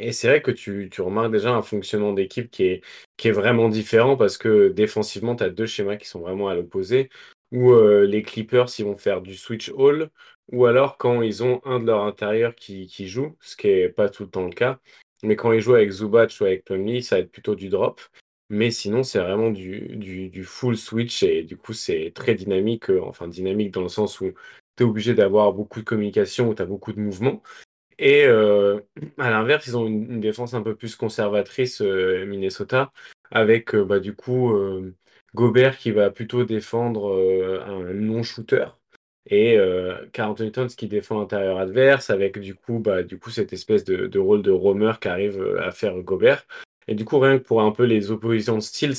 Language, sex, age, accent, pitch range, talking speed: French, male, 20-39, French, 100-125 Hz, 220 wpm